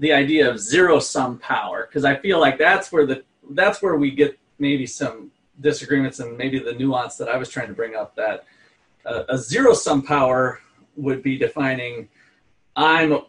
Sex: male